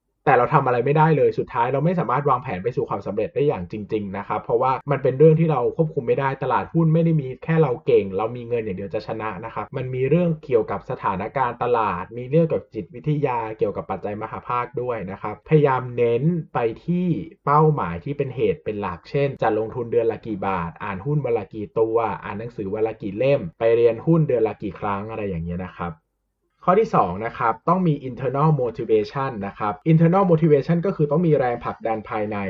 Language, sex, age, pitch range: Thai, male, 20-39, 115-165 Hz